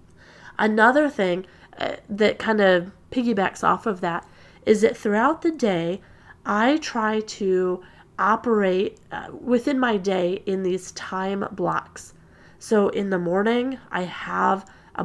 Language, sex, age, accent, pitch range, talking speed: English, female, 30-49, American, 180-225 Hz, 135 wpm